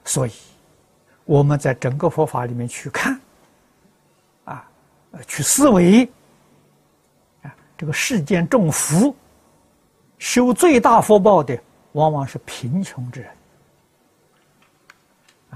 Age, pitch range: 60-79, 130-195 Hz